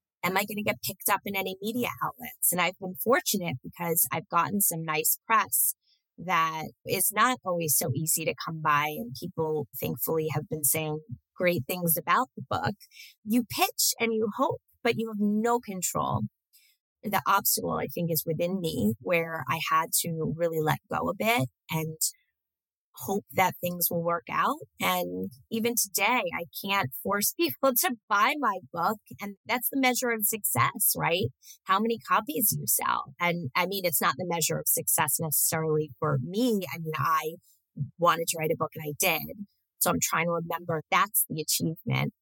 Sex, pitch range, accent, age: female, 155-205 Hz, American, 20-39